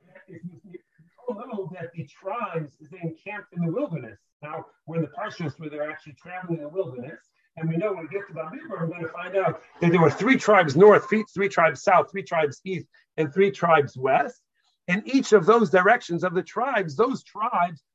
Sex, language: male, English